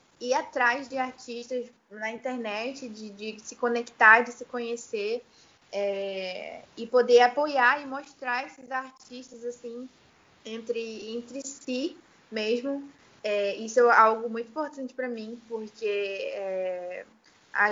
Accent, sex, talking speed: Brazilian, female, 125 wpm